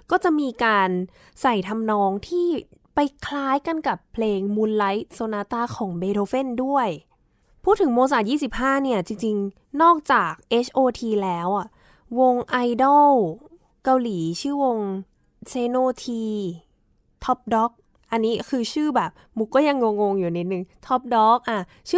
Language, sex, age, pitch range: Thai, female, 10-29, 190-250 Hz